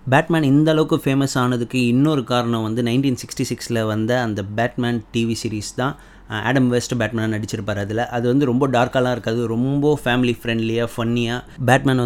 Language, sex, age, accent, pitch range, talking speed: Tamil, male, 30-49, native, 115-130 Hz, 160 wpm